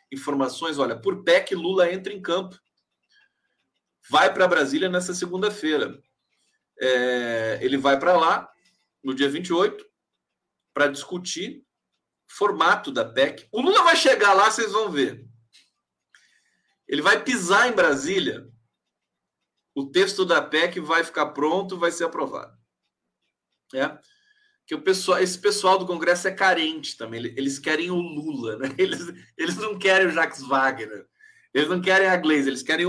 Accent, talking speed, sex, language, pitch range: Brazilian, 145 wpm, male, Portuguese, 145-215 Hz